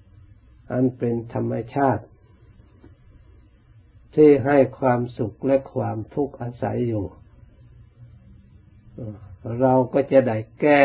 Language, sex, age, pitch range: Thai, male, 60-79, 110-130 Hz